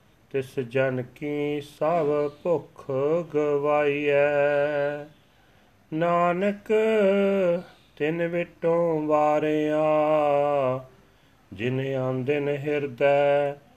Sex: male